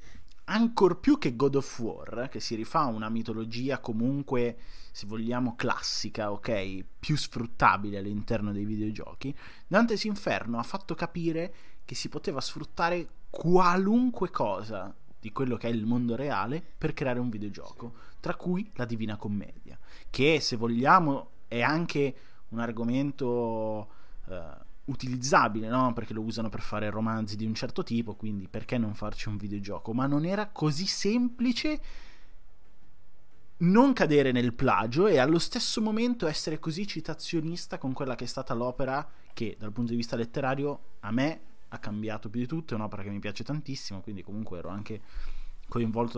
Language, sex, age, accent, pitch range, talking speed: Italian, male, 20-39, native, 110-160 Hz, 155 wpm